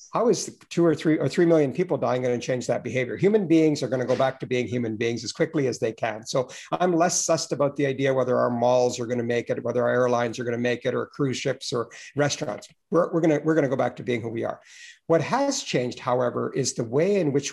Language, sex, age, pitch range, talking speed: English, male, 50-69, 125-160 Hz, 280 wpm